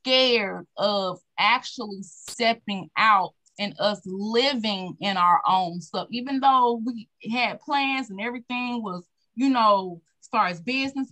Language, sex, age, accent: English, female, 20-39, American